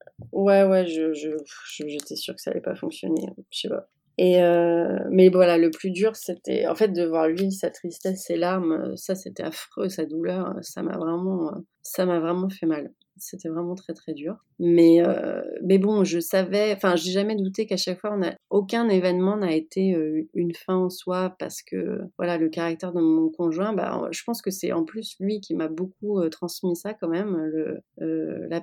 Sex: female